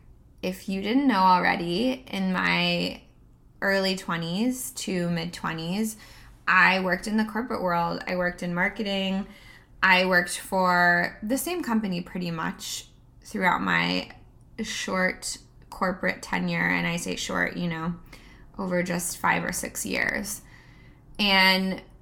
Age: 20-39